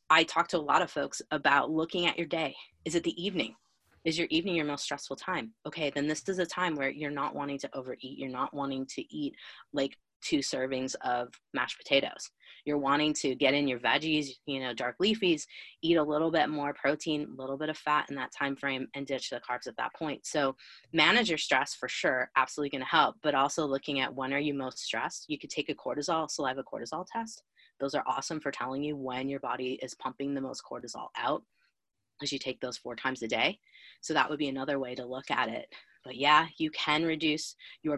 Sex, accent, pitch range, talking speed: female, American, 130-155 Hz, 230 wpm